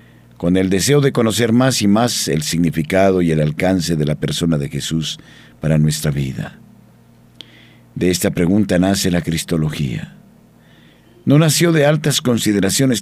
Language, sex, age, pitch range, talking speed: Spanish, male, 50-69, 85-125 Hz, 145 wpm